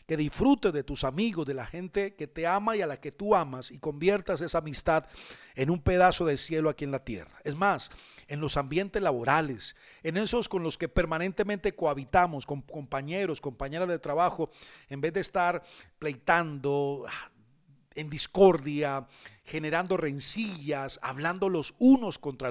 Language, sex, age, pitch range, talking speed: Spanish, male, 40-59, 145-185 Hz, 165 wpm